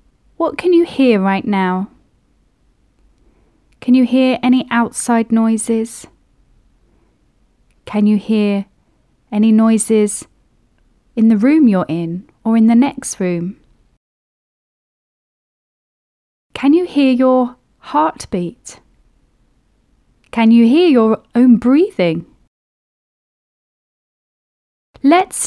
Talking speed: 90 wpm